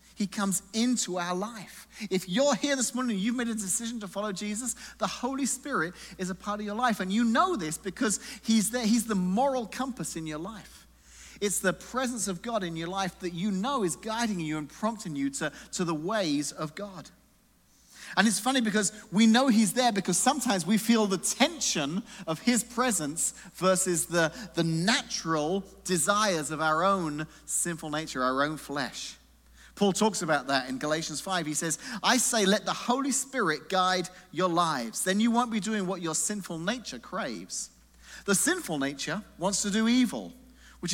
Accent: British